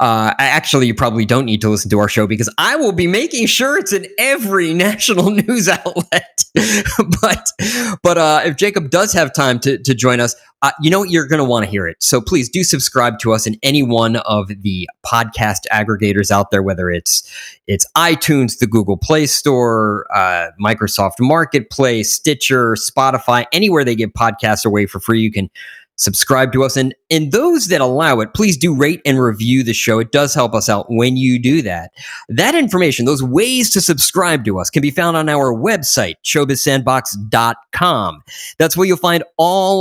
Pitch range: 115-175 Hz